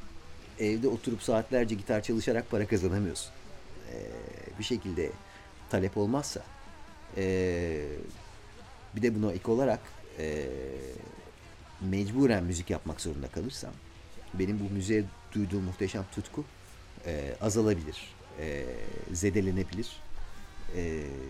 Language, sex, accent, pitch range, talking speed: English, male, Turkish, 80-105 Hz, 100 wpm